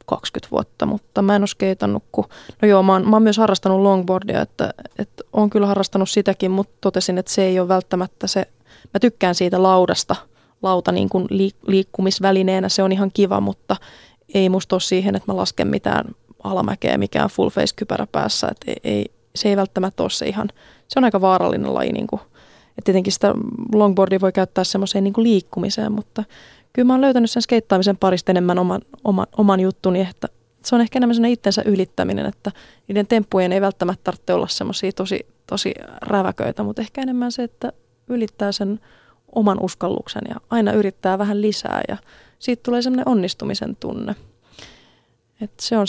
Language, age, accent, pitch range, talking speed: Finnish, 20-39, native, 185-220 Hz, 175 wpm